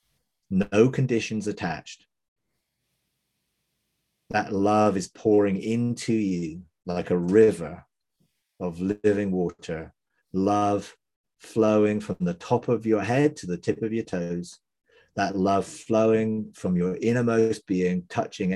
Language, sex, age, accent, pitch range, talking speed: English, male, 30-49, British, 90-110 Hz, 120 wpm